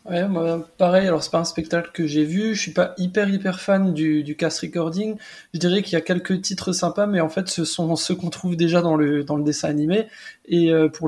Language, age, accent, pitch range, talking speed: French, 20-39, French, 160-190 Hz, 250 wpm